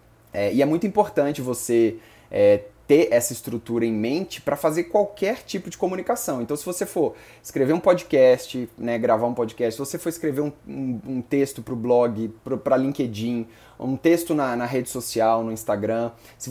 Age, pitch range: 20-39, 115-165 Hz